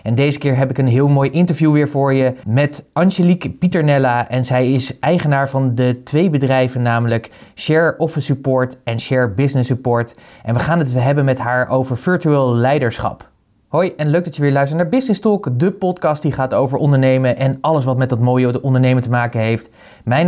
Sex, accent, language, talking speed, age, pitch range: male, Dutch, Dutch, 200 wpm, 20-39, 120-145 Hz